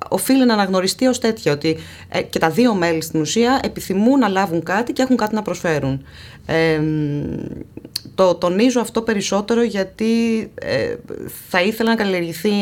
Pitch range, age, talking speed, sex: 160-215 Hz, 20-39, 155 wpm, female